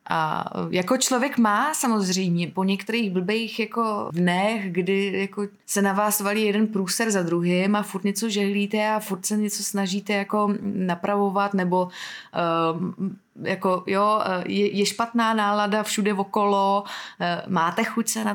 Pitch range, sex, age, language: 175-210 Hz, female, 20-39, Czech